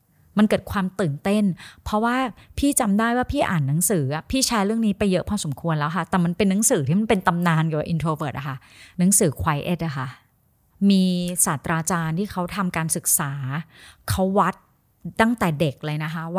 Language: Thai